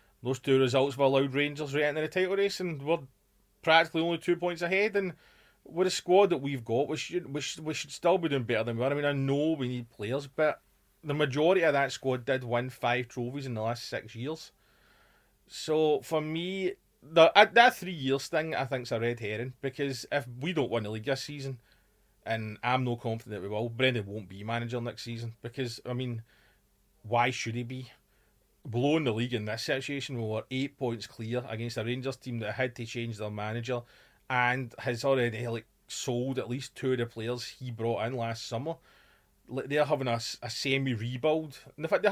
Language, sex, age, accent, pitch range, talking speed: English, male, 30-49, British, 120-155 Hz, 215 wpm